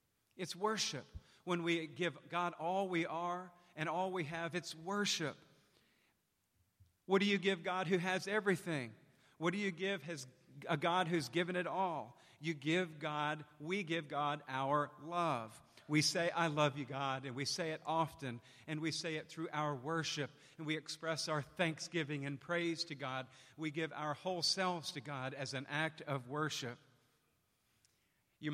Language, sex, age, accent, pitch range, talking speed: English, male, 50-69, American, 135-175 Hz, 170 wpm